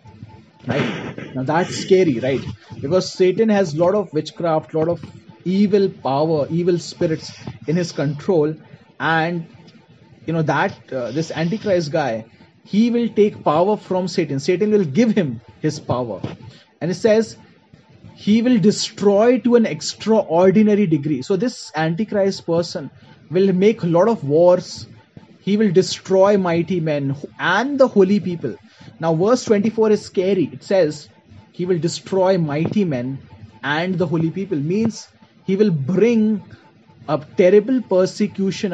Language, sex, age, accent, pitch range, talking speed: Hindi, male, 30-49, native, 150-195 Hz, 140 wpm